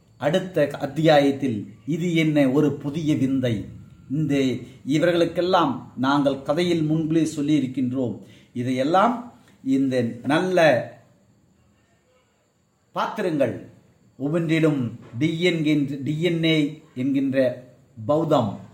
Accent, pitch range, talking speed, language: native, 130-165 Hz, 65 wpm, Tamil